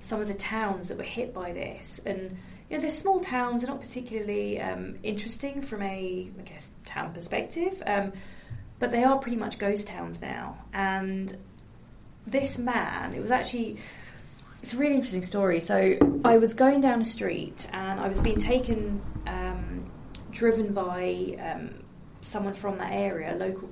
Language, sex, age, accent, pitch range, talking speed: English, female, 20-39, British, 185-245 Hz, 170 wpm